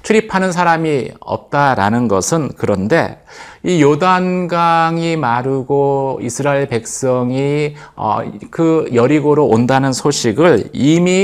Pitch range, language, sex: 120-160 Hz, Korean, male